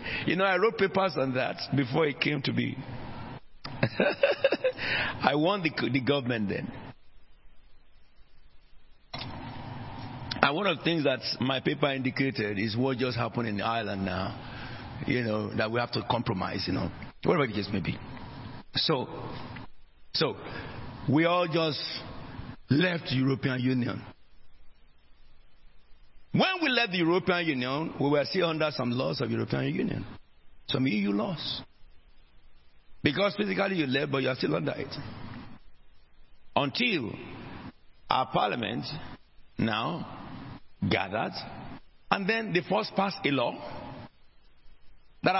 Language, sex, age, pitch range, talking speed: English, male, 60-79, 105-150 Hz, 125 wpm